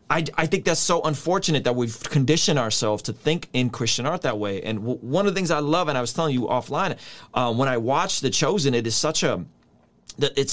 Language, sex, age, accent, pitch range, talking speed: English, male, 30-49, American, 120-160 Hz, 240 wpm